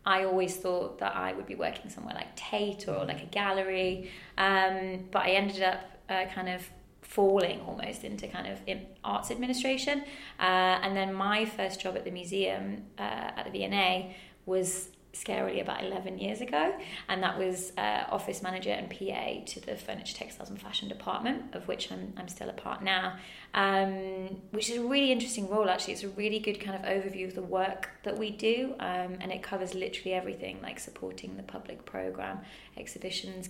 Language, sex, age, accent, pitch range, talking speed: English, female, 20-39, British, 185-200 Hz, 190 wpm